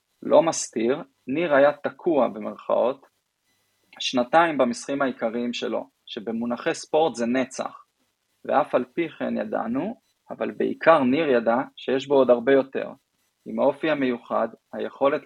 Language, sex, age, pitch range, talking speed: Hebrew, male, 20-39, 125-160 Hz, 125 wpm